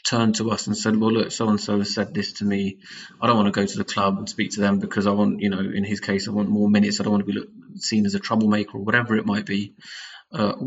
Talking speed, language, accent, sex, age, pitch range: 290 wpm, English, British, male, 20-39, 105-115 Hz